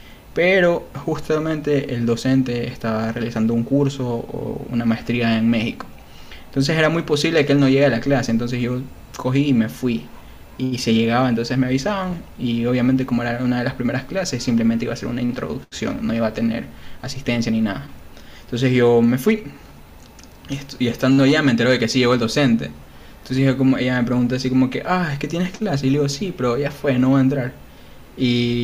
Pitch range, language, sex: 115-135 Hz, Spanish, male